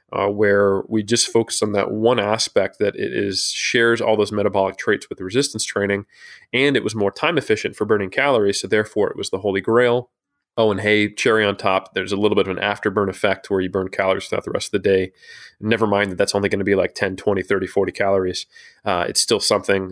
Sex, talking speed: male, 240 wpm